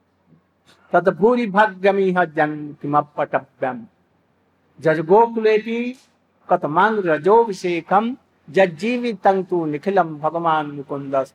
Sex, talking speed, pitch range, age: male, 65 wpm, 150-220 Hz, 60-79